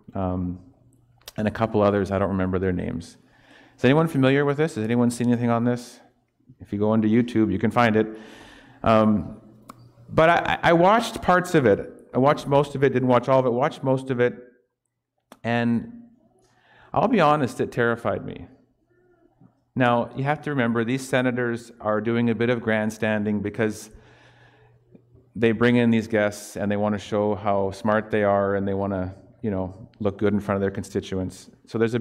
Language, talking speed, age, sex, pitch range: English, 195 wpm, 40-59, male, 105-125 Hz